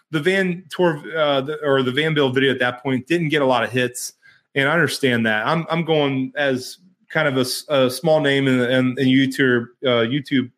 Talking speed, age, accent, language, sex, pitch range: 220 wpm, 30-49, American, English, male, 125-155 Hz